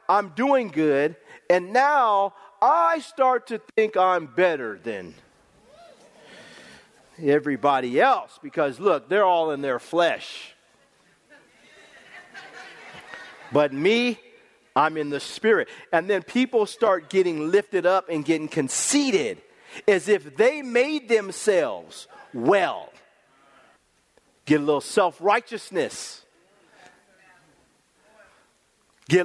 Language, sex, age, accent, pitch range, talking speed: English, male, 40-59, American, 190-255 Hz, 100 wpm